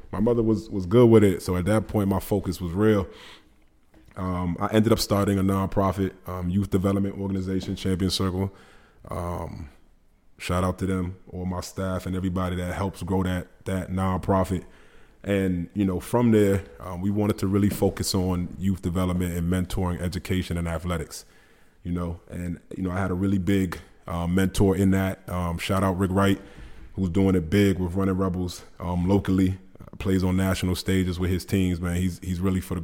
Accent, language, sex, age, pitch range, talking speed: American, English, male, 20-39, 90-100 Hz, 190 wpm